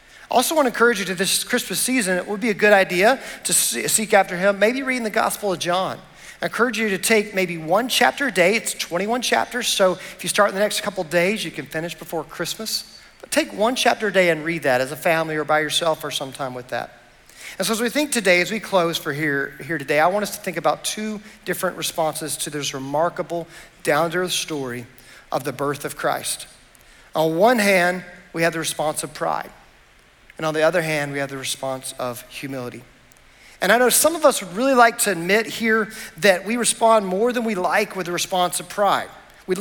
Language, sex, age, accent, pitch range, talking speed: English, male, 50-69, American, 160-220 Hz, 225 wpm